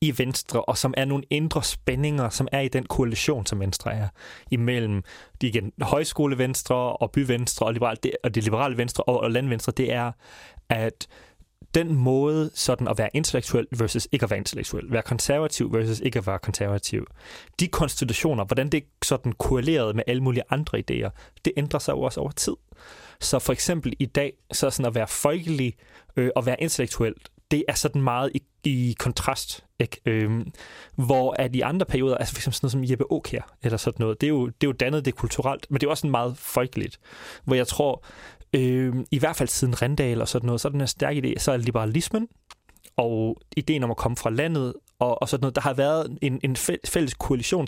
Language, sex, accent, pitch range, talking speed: Danish, male, native, 115-140 Hz, 200 wpm